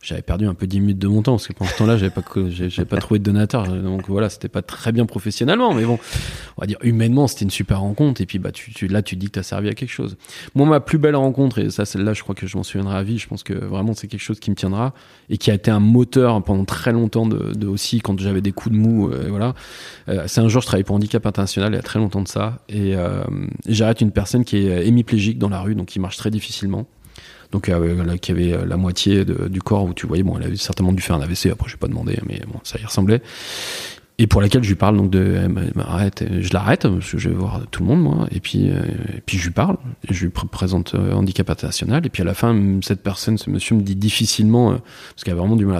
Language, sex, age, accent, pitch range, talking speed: French, male, 20-39, French, 95-115 Hz, 280 wpm